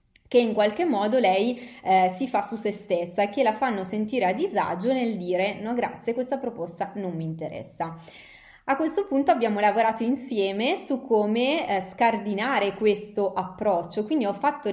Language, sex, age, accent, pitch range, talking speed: Italian, female, 20-39, native, 185-235 Hz, 170 wpm